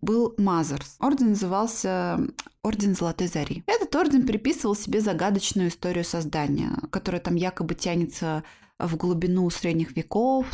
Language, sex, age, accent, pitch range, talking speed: Russian, female, 20-39, native, 175-235 Hz, 125 wpm